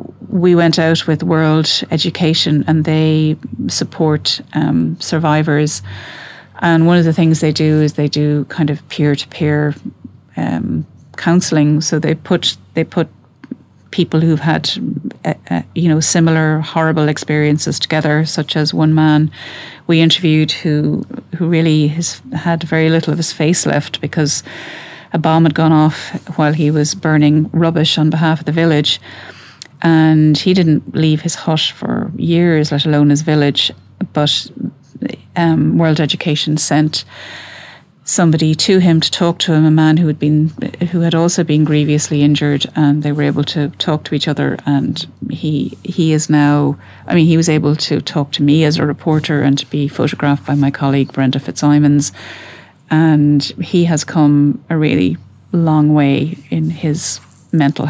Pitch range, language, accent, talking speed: 145-160 Hz, English, Irish, 165 wpm